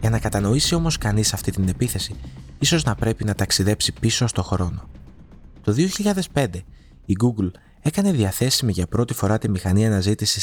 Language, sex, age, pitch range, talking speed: Greek, male, 20-39, 90-120 Hz, 160 wpm